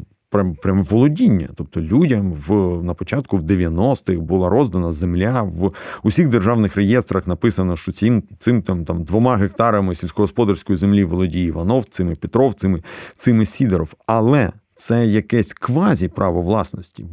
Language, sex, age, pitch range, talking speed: Ukrainian, male, 40-59, 95-120 Hz, 135 wpm